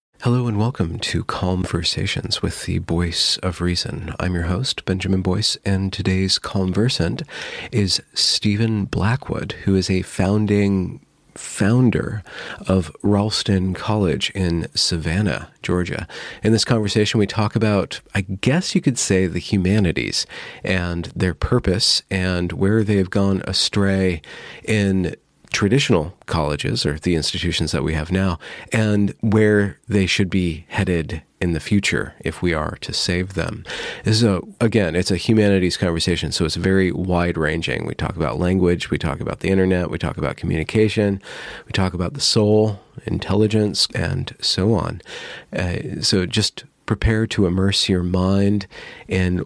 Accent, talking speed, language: American, 145 wpm, English